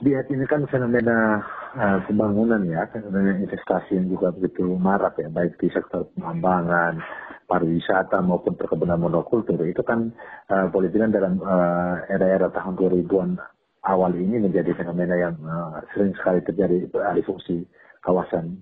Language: Indonesian